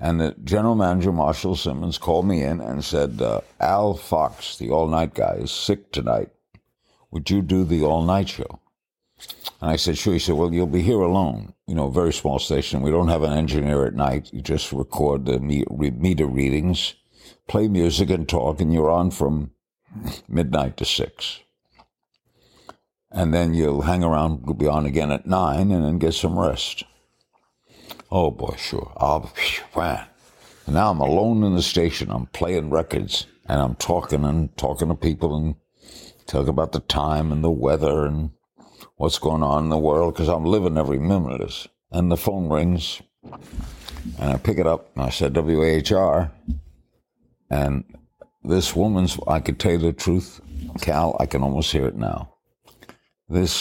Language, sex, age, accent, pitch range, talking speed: English, male, 60-79, American, 75-90 Hz, 180 wpm